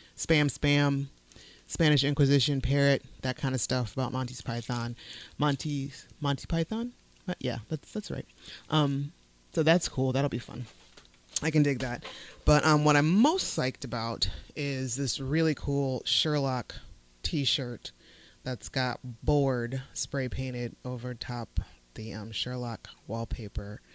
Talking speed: 140 wpm